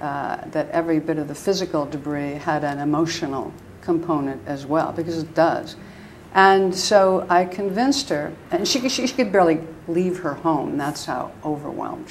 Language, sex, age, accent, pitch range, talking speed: English, female, 60-79, American, 160-190 Hz, 170 wpm